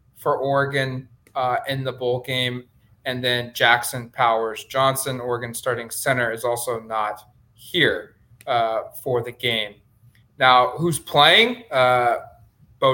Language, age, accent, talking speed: English, 20-39, American, 130 wpm